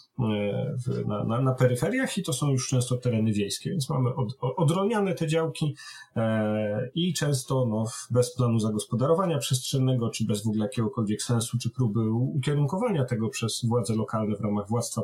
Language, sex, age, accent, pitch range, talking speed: Polish, male, 40-59, native, 110-135 Hz, 170 wpm